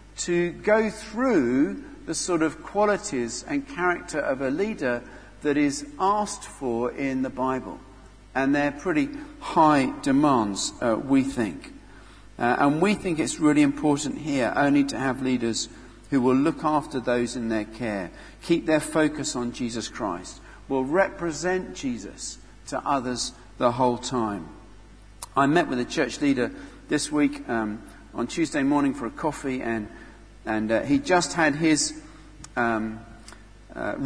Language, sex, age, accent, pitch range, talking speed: English, male, 50-69, British, 125-175 Hz, 150 wpm